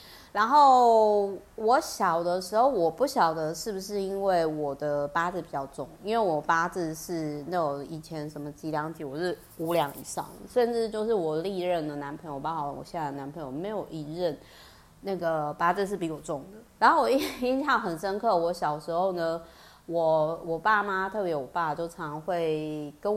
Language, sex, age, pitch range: Chinese, female, 30-49, 155-200 Hz